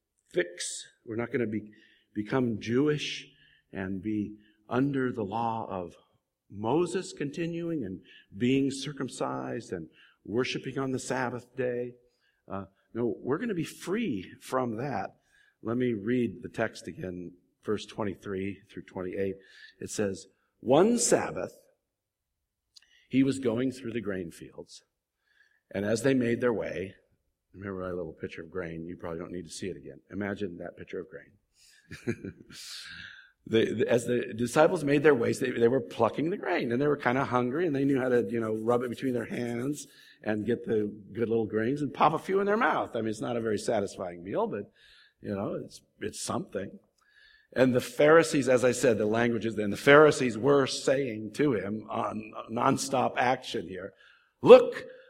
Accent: American